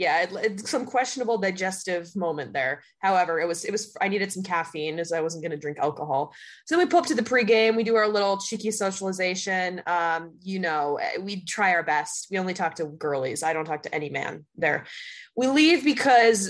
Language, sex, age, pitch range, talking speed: English, female, 20-39, 175-230 Hz, 220 wpm